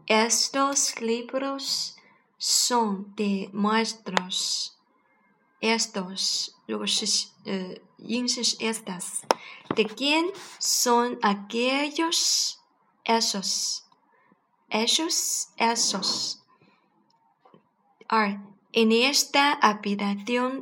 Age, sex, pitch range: 20-39, female, 205-250 Hz